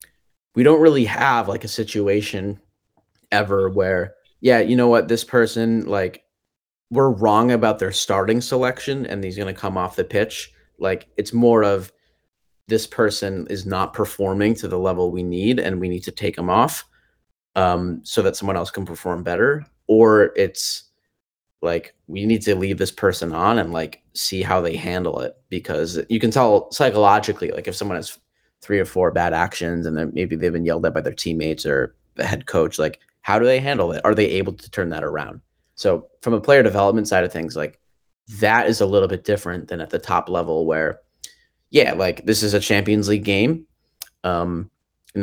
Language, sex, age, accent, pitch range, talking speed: English, male, 30-49, American, 90-110 Hz, 195 wpm